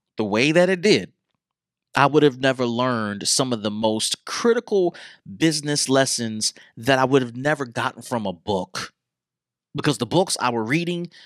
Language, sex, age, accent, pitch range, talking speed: English, male, 30-49, American, 125-180 Hz, 170 wpm